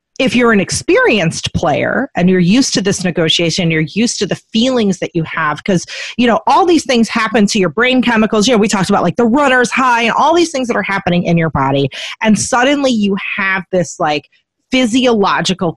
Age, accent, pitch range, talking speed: 30-49, American, 180-230 Hz, 215 wpm